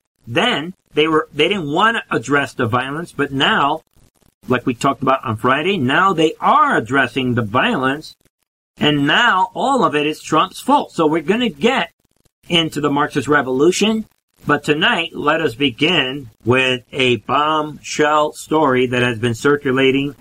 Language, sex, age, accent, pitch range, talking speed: English, male, 50-69, American, 130-150 Hz, 155 wpm